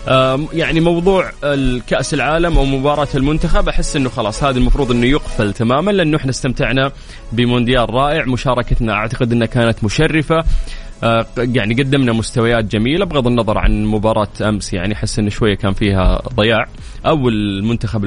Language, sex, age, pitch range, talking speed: Arabic, male, 20-39, 105-130 Hz, 145 wpm